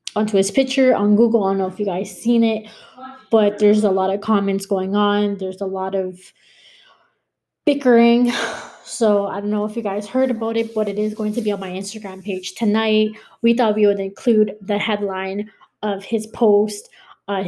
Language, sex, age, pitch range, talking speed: English, female, 20-39, 195-220 Hz, 200 wpm